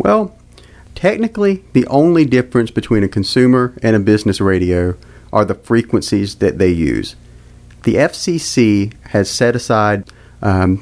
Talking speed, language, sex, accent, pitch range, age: 135 wpm, English, male, American, 100-125 Hz, 40-59